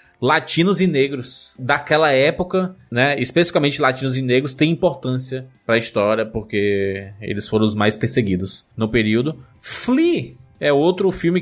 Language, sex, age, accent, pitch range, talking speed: Portuguese, male, 20-39, Brazilian, 130-205 Hz, 140 wpm